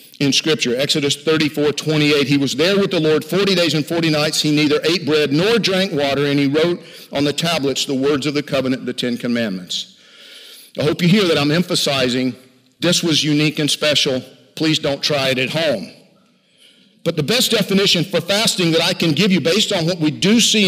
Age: 50-69